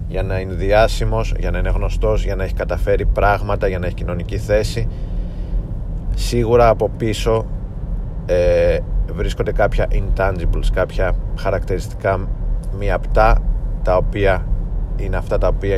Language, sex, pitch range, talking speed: Greek, male, 90-105 Hz, 135 wpm